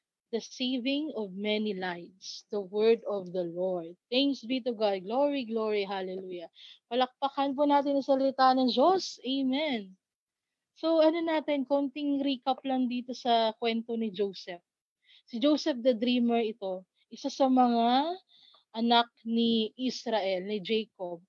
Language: Filipino